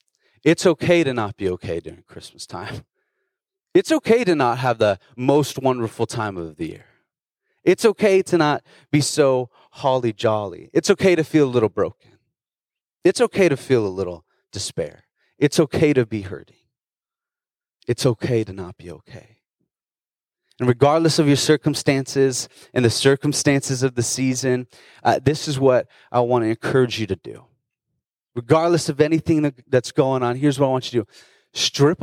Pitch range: 125-155 Hz